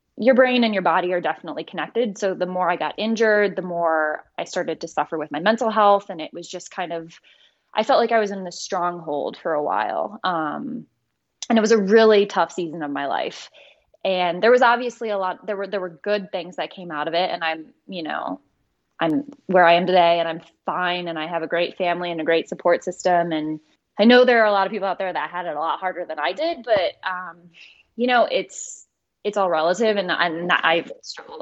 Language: English